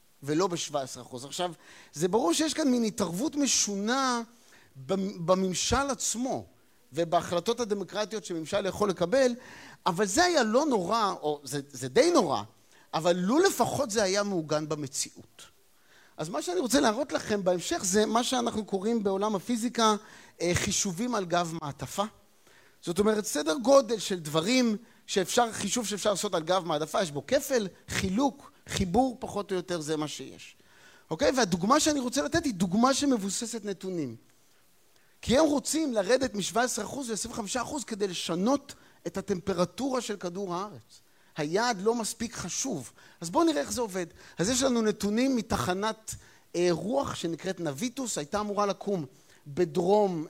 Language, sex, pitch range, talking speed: Hebrew, male, 180-245 Hz, 145 wpm